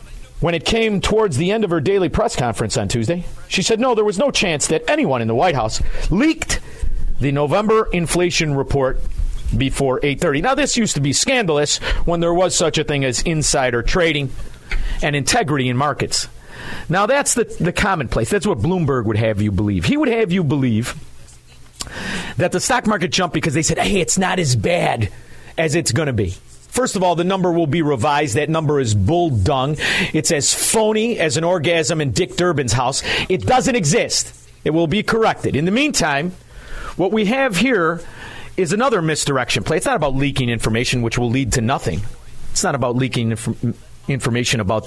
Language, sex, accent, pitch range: English, male, American, 125-185 Hz